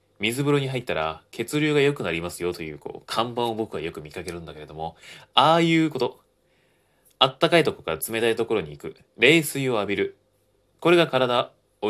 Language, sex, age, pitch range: Japanese, male, 20-39, 90-130 Hz